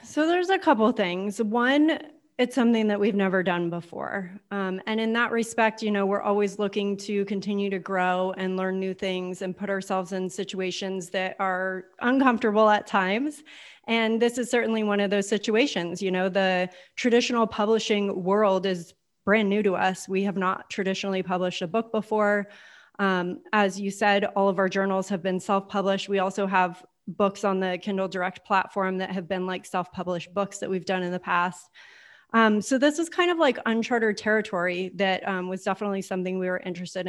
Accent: American